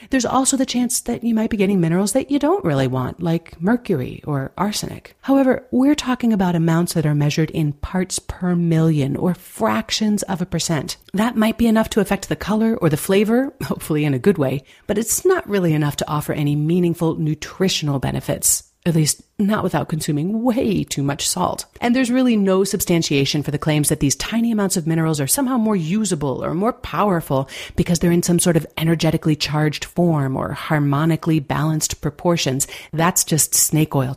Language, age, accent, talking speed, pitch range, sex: English, 40-59, American, 195 wpm, 155-215 Hz, female